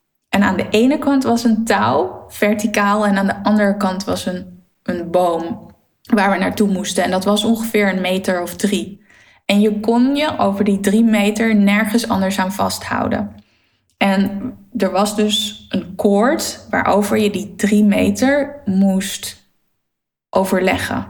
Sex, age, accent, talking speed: female, 10-29, Dutch, 155 wpm